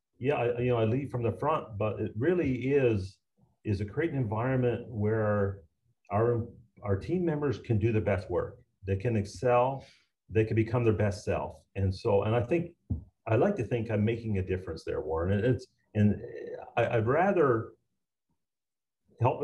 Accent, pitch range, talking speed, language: American, 95-120 Hz, 175 wpm, English